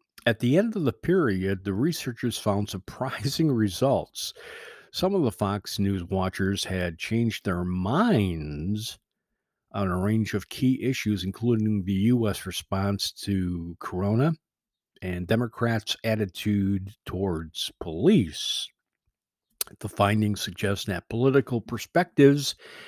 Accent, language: American, English